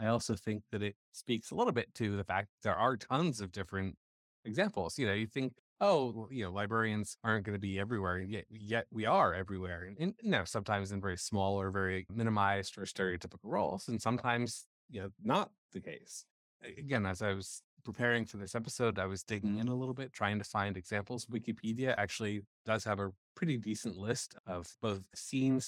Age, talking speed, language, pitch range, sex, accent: 30-49, 205 wpm, English, 100-120 Hz, male, American